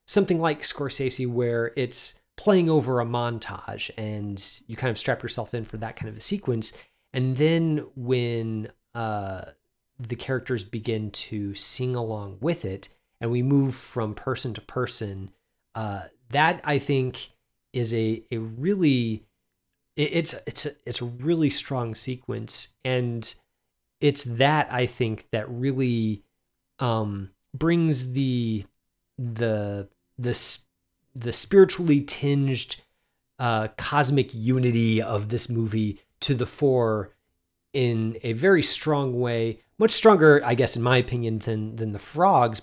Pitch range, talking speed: 110-135 Hz, 140 wpm